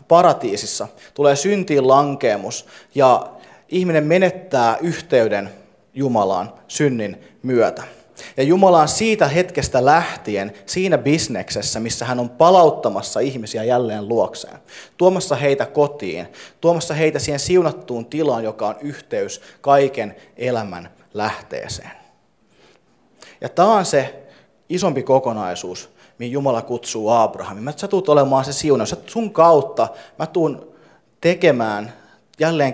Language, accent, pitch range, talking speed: Finnish, native, 120-165 Hz, 110 wpm